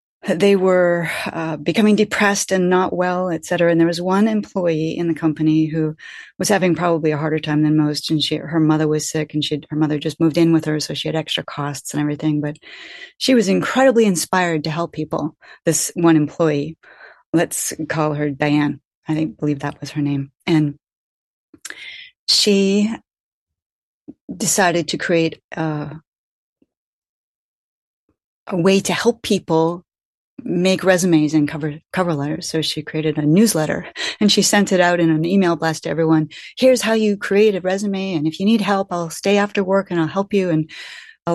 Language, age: English, 30-49